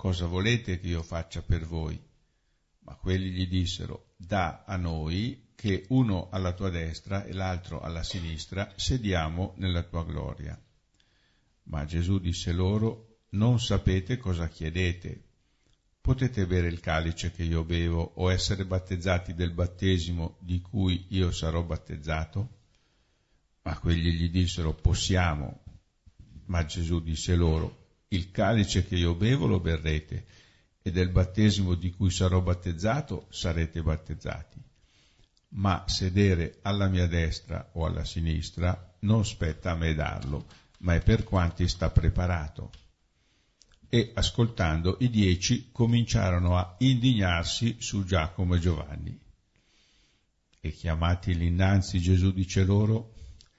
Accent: native